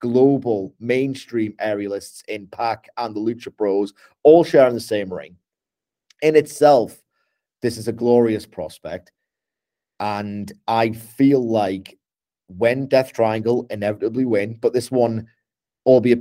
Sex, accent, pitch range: male, British, 105-120 Hz